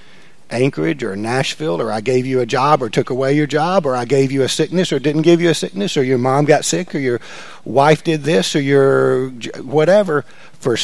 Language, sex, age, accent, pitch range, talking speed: English, male, 50-69, American, 125-150 Hz, 220 wpm